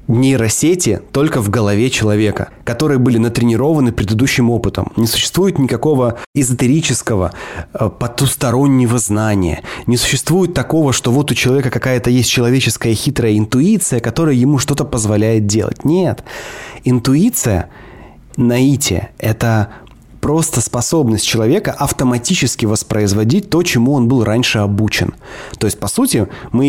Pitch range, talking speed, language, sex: 105-130 Hz, 120 wpm, Russian, male